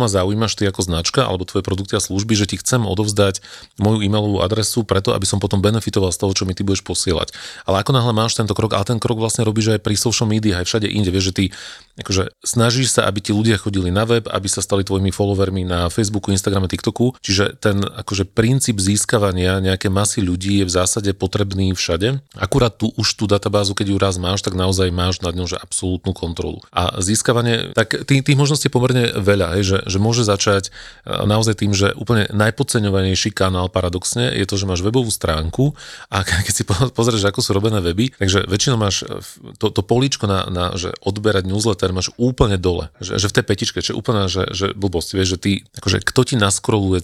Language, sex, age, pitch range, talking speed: Slovak, male, 30-49, 95-115 Hz, 210 wpm